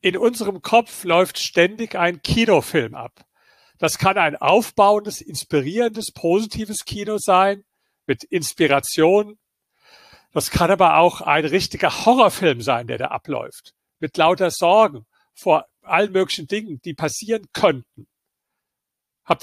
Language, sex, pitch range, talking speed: German, male, 155-200 Hz, 125 wpm